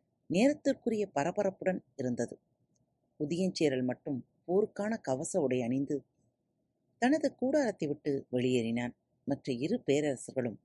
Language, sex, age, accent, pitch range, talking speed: Tamil, female, 30-49, native, 130-195 Hz, 90 wpm